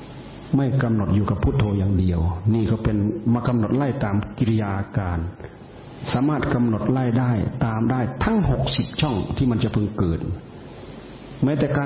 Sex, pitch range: male, 105-135 Hz